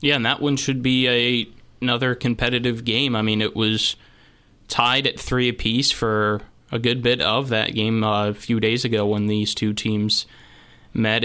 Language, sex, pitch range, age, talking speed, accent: English, male, 105-115 Hz, 20-39, 185 wpm, American